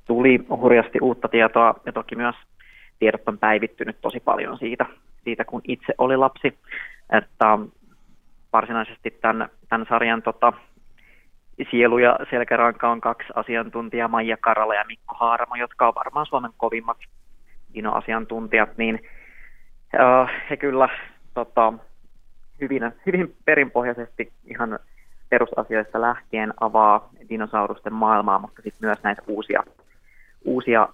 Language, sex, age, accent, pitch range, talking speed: Finnish, male, 20-39, native, 110-125 Hz, 115 wpm